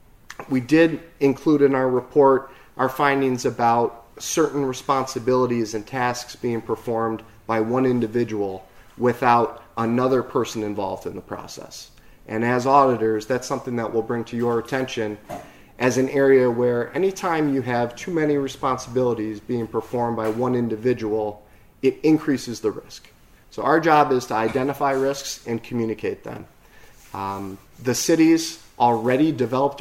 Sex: male